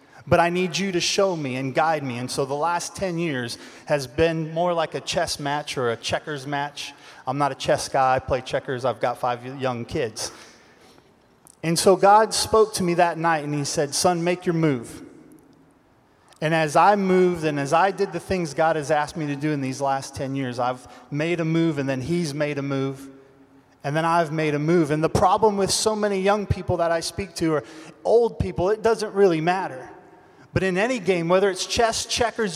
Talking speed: 220 wpm